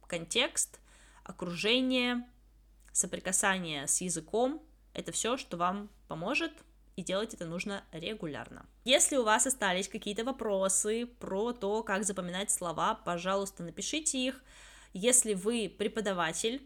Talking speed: 115 wpm